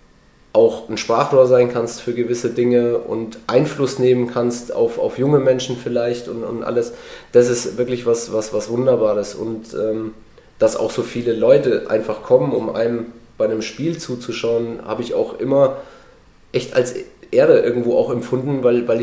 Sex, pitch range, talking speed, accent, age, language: male, 120-150 Hz, 170 wpm, German, 20-39, German